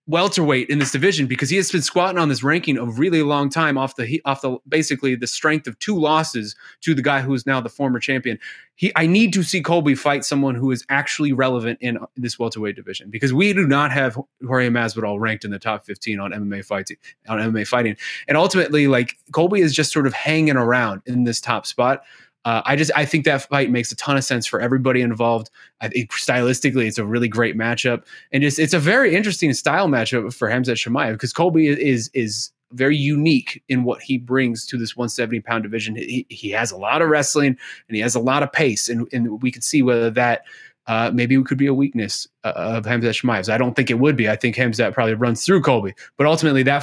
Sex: male